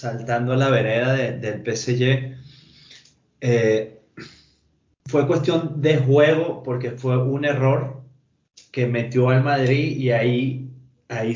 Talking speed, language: 120 wpm, Spanish